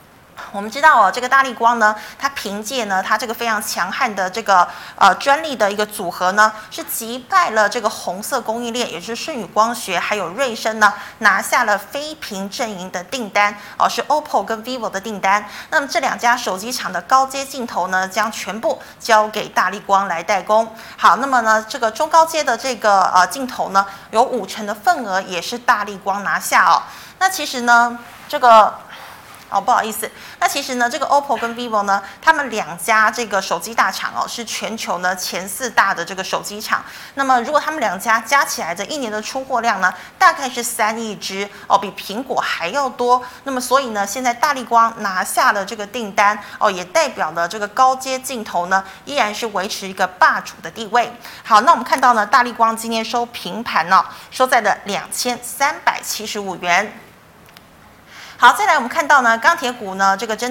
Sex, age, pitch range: female, 20-39, 205-265 Hz